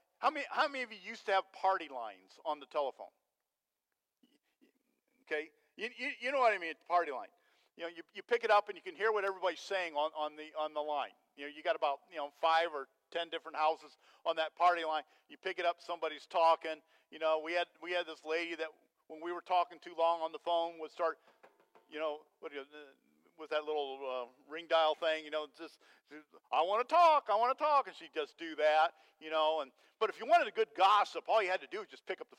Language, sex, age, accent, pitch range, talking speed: English, male, 50-69, American, 155-220 Hz, 250 wpm